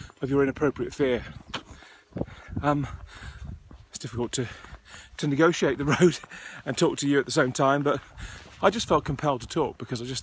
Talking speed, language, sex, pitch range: 175 wpm, English, male, 110-135 Hz